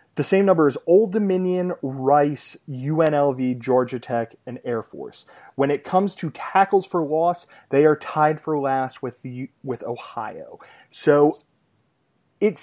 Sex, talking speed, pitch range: male, 145 wpm, 130-170 Hz